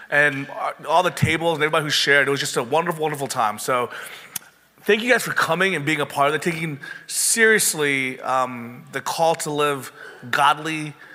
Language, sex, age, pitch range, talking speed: English, male, 30-49, 145-185 Hz, 190 wpm